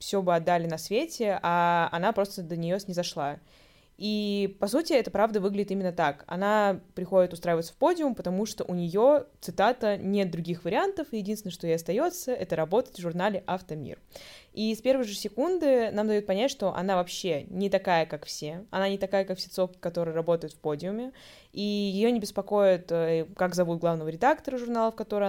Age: 20-39